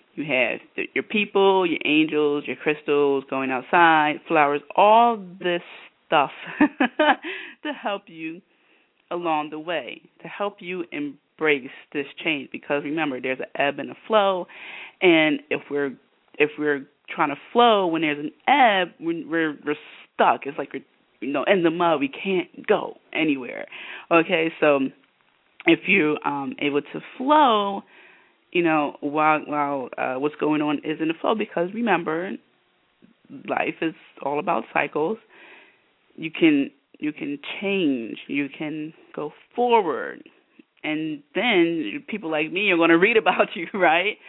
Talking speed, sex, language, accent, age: 150 wpm, female, English, American, 20-39